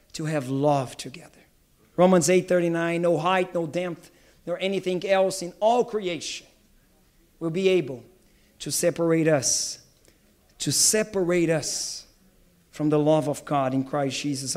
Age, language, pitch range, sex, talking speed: 40-59, English, 155-210 Hz, male, 135 wpm